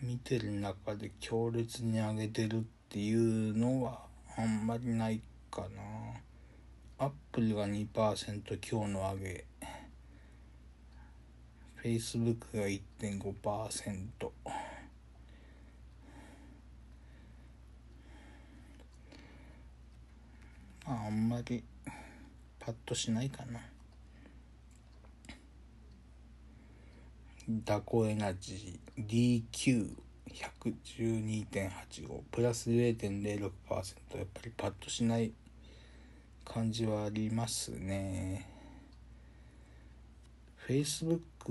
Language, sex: Japanese, male